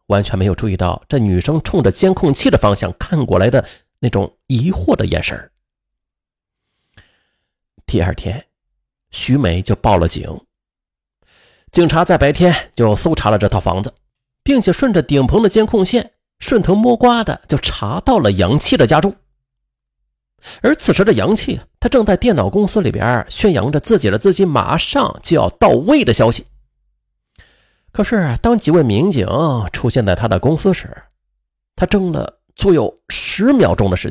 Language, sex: Chinese, male